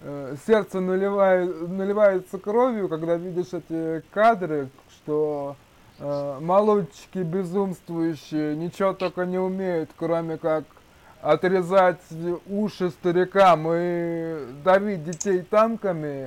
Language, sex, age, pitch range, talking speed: Russian, male, 20-39, 160-215 Hz, 90 wpm